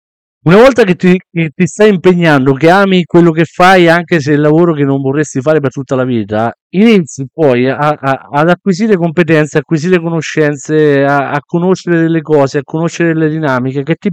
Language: Italian